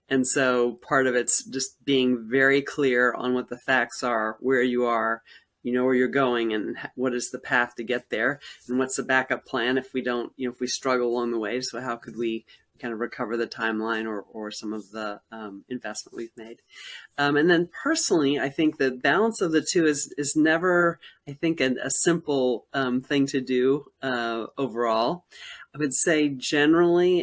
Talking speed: 205 wpm